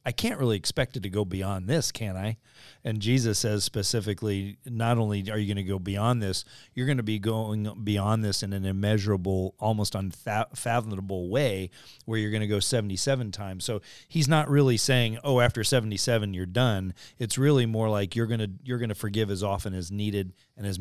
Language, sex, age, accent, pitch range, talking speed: English, male, 40-59, American, 95-120 Hz, 200 wpm